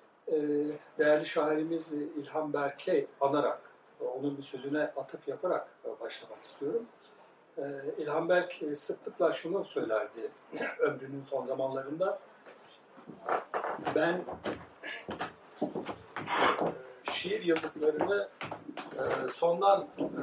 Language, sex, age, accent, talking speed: Turkish, male, 60-79, native, 70 wpm